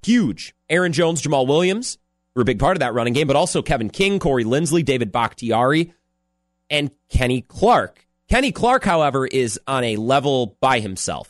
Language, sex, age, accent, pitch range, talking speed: English, male, 30-49, American, 115-180 Hz, 175 wpm